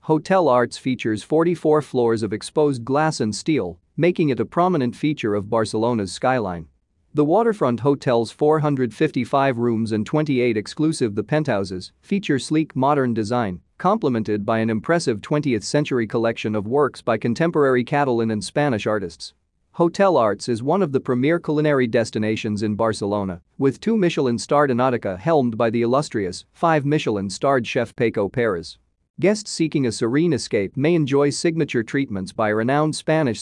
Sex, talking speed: male, 145 wpm